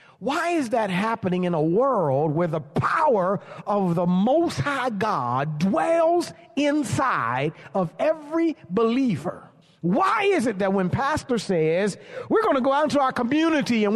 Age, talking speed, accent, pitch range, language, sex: 40-59, 155 wpm, American, 175-285 Hz, English, male